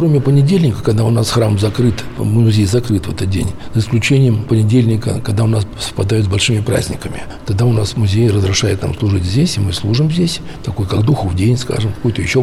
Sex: male